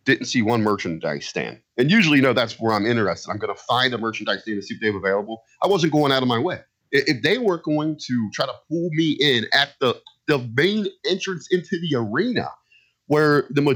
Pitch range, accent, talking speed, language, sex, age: 115-160 Hz, American, 225 wpm, English, male, 30-49